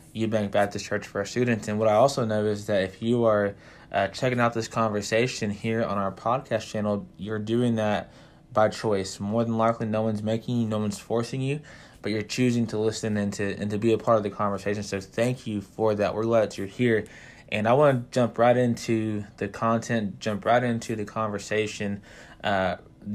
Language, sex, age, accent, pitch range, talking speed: English, male, 20-39, American, 105-115 Hz, 215 wpm